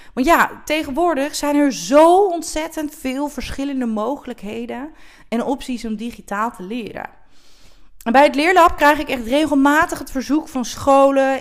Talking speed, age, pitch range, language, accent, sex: 145 wpm, 30-49, 210-295 Hz, Dutch, Dutch, female